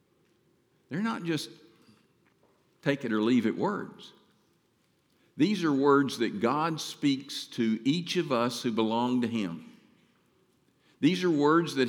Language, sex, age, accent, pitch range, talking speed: English, male, 50-69, American, 115-150 Hz, 115 wpm